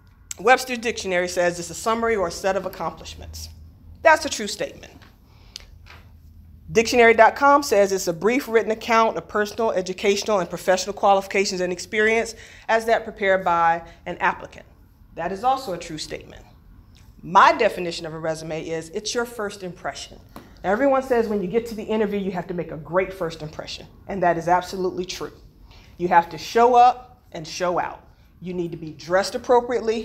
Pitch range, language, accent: 160-220 Hz, English, American